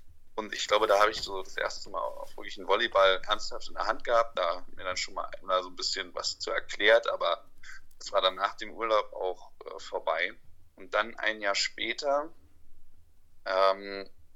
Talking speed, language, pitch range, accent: 190 wpm, German, 90-110 Hz, German